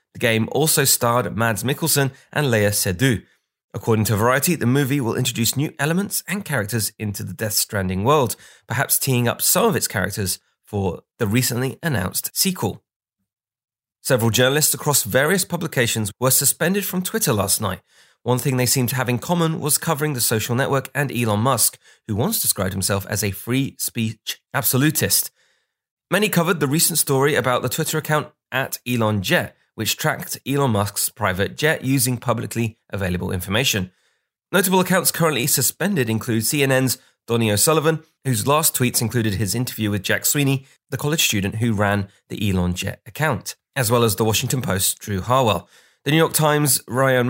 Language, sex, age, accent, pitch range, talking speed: English, male, 30-49, British, 110-145 Hz, 170 wpm